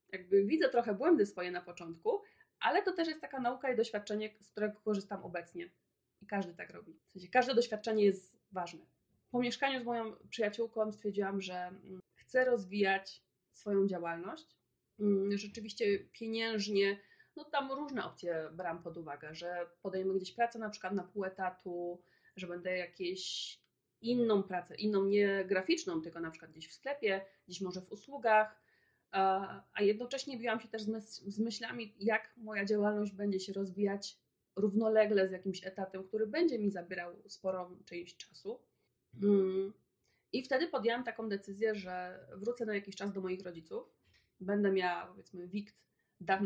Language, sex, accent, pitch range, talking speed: Polish, female, native, 185-225 Hz, 155 wpm